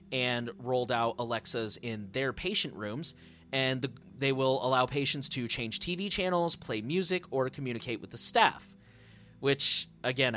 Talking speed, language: 155 wpm, English